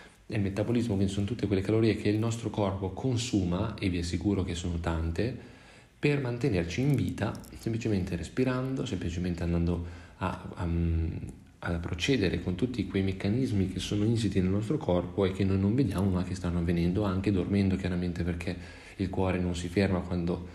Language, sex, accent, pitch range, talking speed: Italian, male, native, 90-105 Hz, 170 wpm